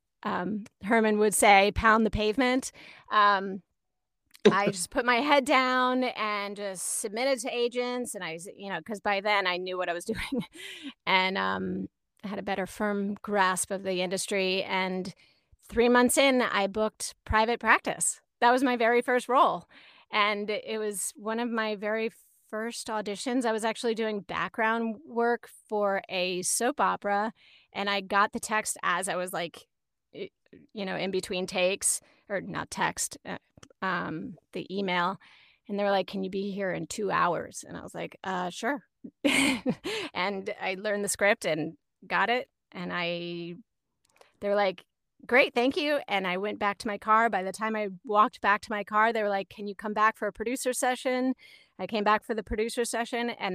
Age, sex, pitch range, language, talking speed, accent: 30-49, female, 195-235 Hz, English, 185 wpm, American